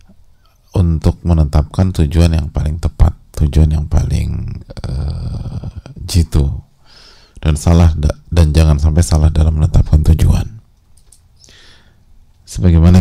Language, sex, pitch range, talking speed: English, male, 75-85 Hz, 95 wpm